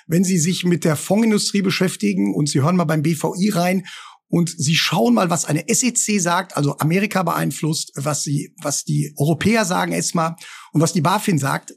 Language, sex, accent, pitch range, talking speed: German, male, German, 150-195 Hz, 190 wpm